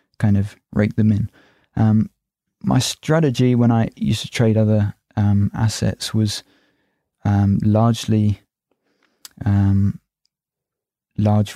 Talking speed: 110 wpm